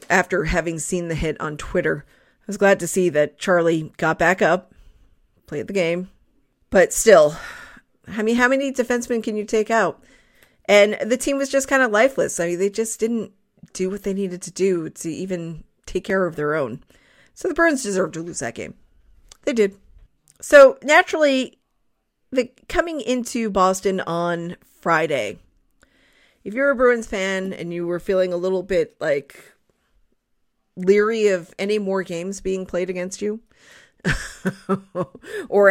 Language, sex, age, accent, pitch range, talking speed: English, female, 40-59, American, 175-220 Hz, 165 wpm